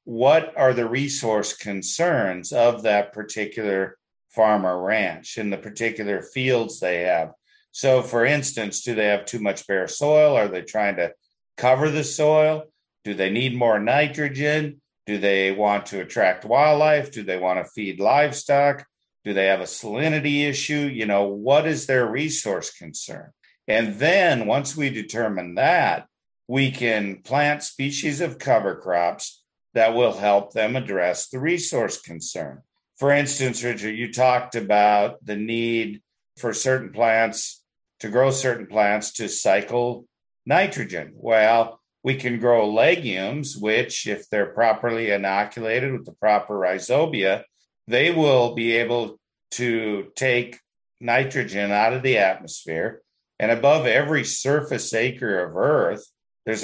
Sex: male